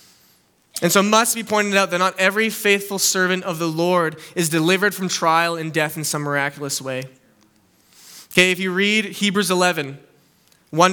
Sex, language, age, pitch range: male, English, 20-39, 170-210 Hz